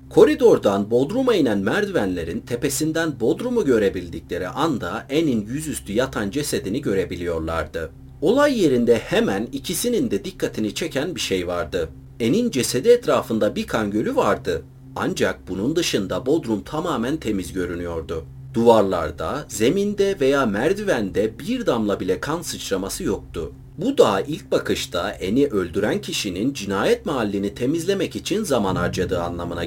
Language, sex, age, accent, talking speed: Turkish, male, 40-59, native, 125 wpm